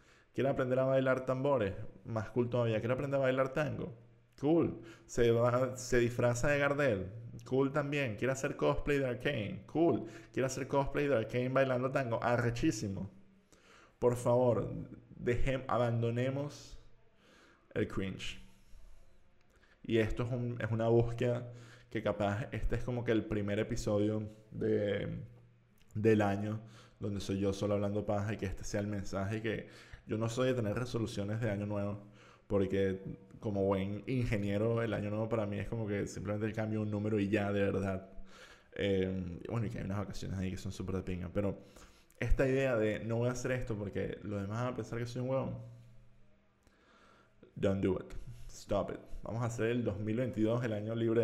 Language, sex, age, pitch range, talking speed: Spanish, male, 20-39, 105-125 Hz, 170 wpm